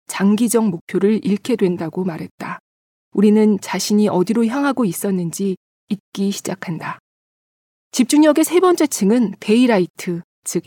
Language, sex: Korean, female